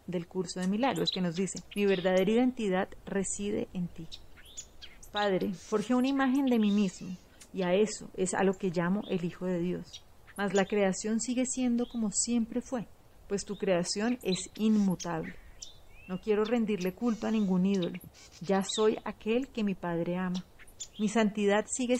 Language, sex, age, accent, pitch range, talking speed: Spanish, female, 30-49, Colombian, 185-230 Hz, 170 wpm